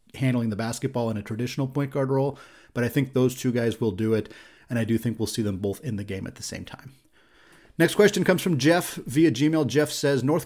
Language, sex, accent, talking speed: English, male, American, 245 wpm